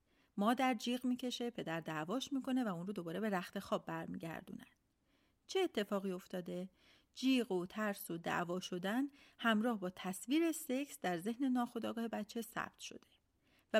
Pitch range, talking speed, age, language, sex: 180-270 Hz, 150 wpm, 40-59, Persian, female